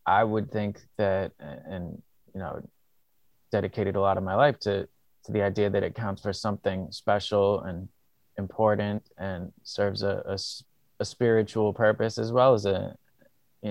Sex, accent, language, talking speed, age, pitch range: male, American, English, 160 wpm, 20-39, 100-110 Hz